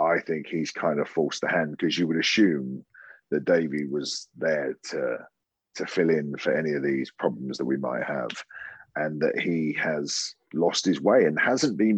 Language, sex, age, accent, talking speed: English, male, 40-59, British, 195 wpm